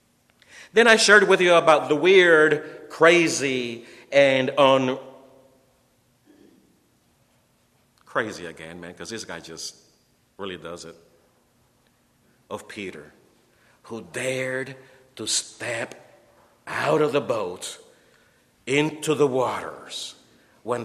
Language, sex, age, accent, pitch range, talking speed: English, male, 50-69, American, 130-180 Hz, 100 wpm